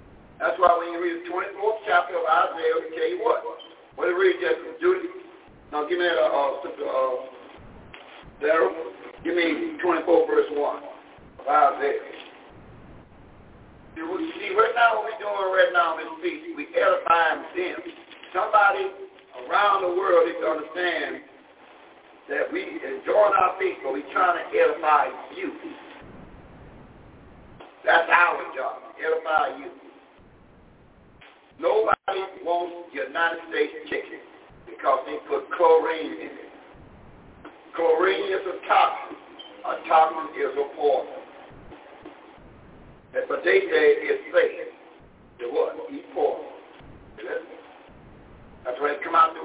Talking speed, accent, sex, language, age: 130 wpm, American, male, English, 50-69